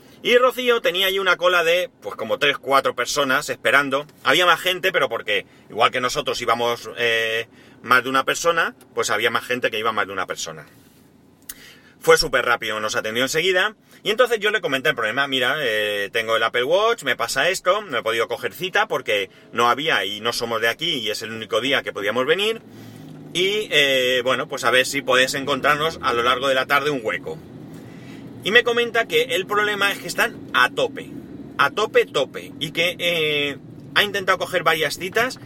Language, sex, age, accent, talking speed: Spanish, male, 30-49, Spanish, 200 wpm